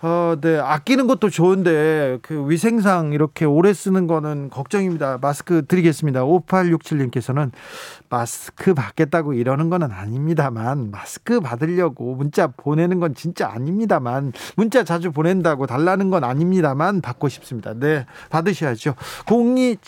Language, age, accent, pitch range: Korean, 40-59, native, 135-180 Hz